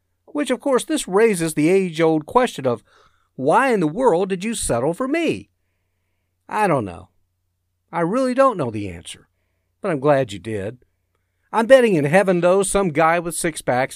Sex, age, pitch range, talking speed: male, 50-69, 100-165 Hz, 175 wpm